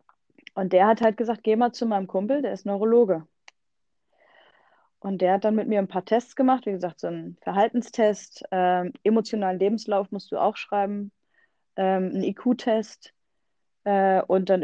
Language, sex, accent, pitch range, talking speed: German, female, German, 195-230 Hz, 170 wpm